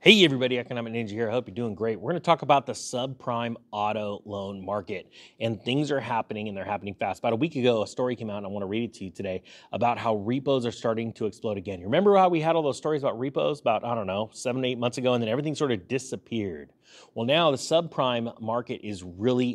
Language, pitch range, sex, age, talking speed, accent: English, 115-140 Hz, male, 30-49, 250 wpm, American